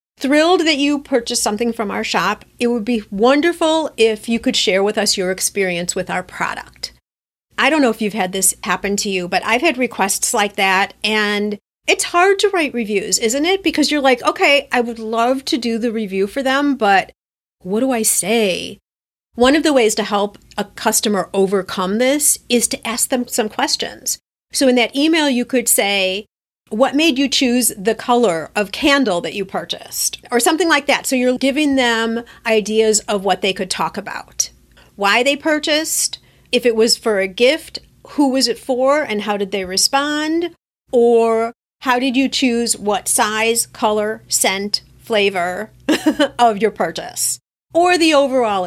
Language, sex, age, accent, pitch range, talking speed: English, female, 40-59, American, 205-270 Hz, 180 wpm